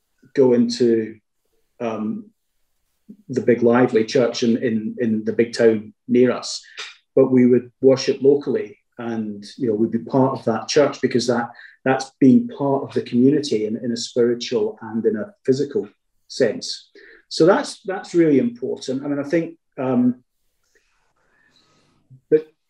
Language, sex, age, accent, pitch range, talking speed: English, male, 40-59, British, 120-150 Hz, 150 wpm